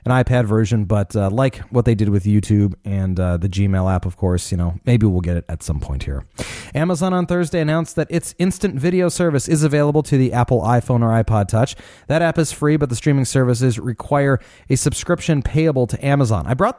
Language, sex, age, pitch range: English, male, 30-49, 105-145 Hz